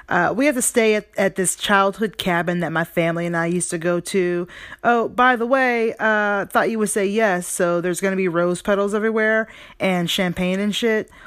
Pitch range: 165-235 Hz